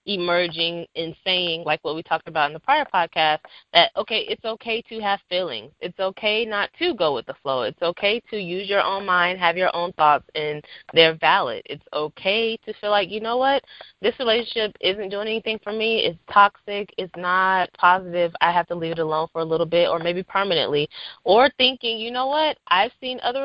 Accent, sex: American, female